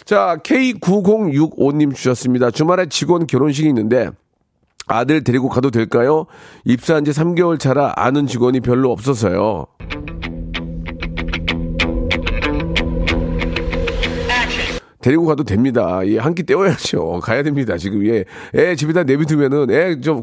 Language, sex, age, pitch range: Korean, male, 40-59, 125-180 Hz